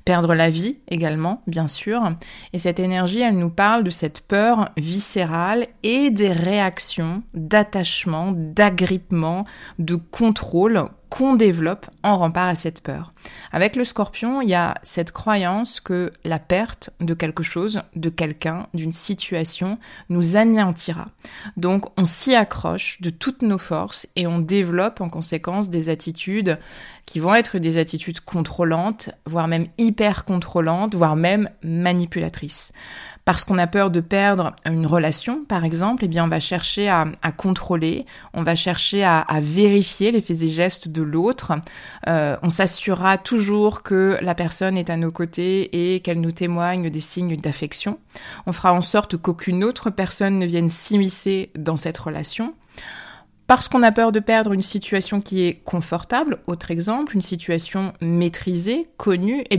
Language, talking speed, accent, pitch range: French, 160 wpm, French, 165-205 Hz